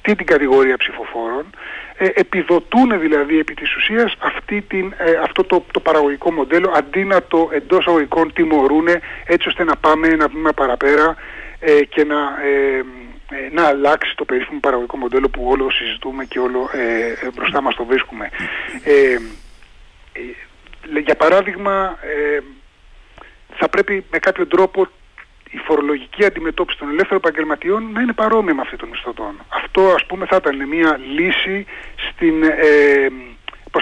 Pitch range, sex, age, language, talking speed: 140-195 Hz, male, 30-49, Greek, 150 wpm